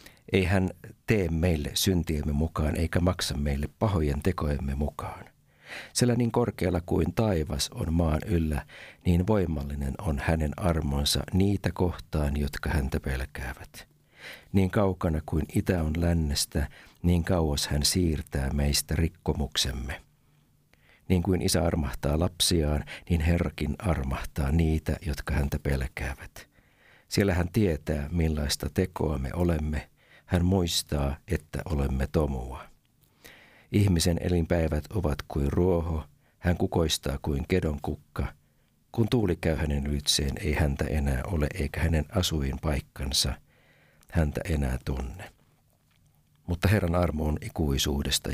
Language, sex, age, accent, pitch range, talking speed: Finnish, male, 60-79, native, 70-90 Hz, 120 wpm